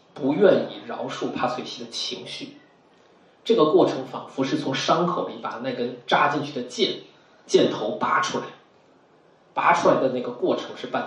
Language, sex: Chinese, male